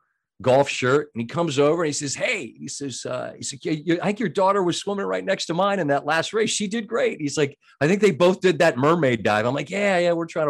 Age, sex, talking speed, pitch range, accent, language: 40-59, male, 285 wpm, 130-185 Hz, American, English